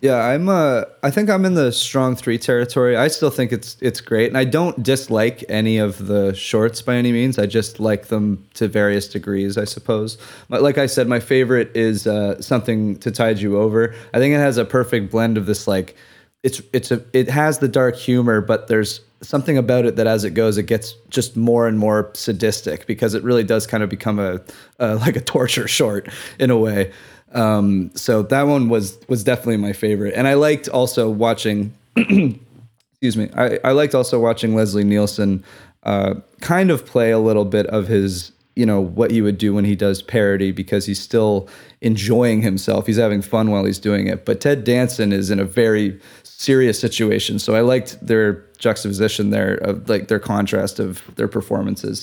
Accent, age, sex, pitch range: American, 20-39, male, 105-125 Hz